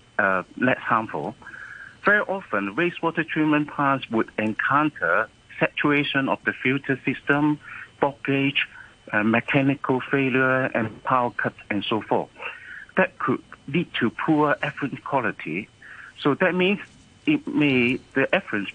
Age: 60-79